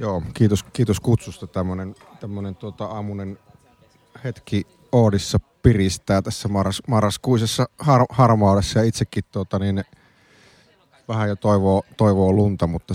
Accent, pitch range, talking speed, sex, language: native, 95-110 Hz, 110 wpm, male, Finnish